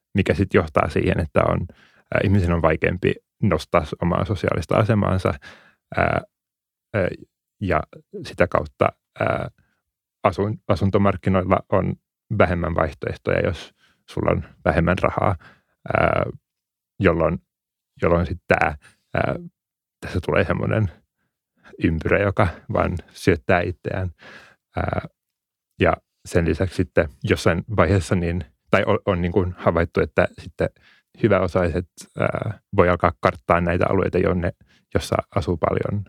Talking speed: 115 wpm